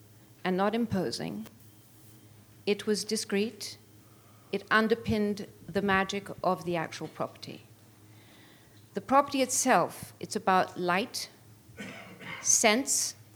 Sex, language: female, English